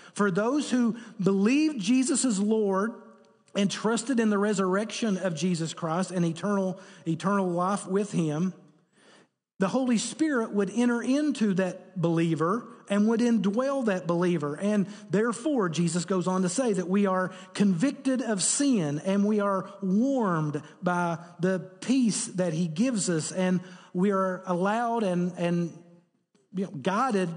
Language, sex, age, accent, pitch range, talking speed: English, male, 40-59, American, 175-220 Hz, 140 wpm